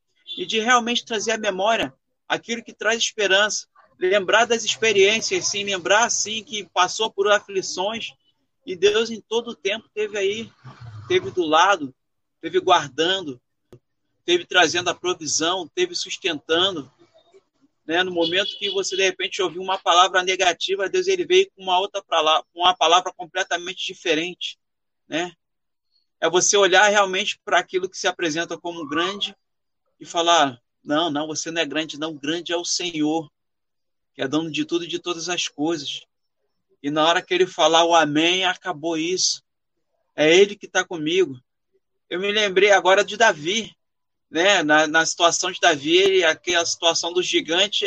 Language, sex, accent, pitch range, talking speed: Portuguese, male, Brazilian, 170-225 Hz, 165 wpm